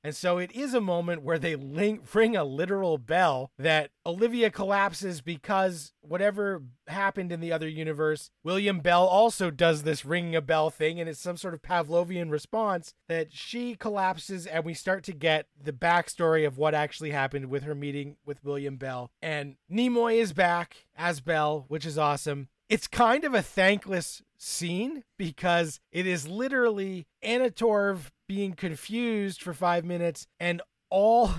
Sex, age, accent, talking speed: male, 30-49, American, 160 wpm